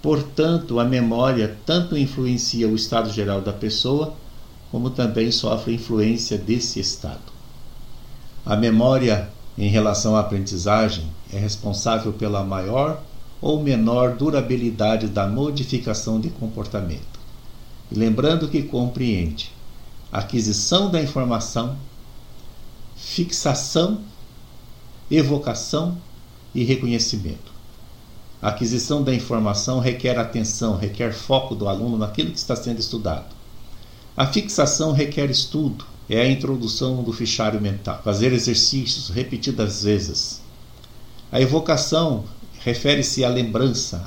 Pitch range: 110-135 Hz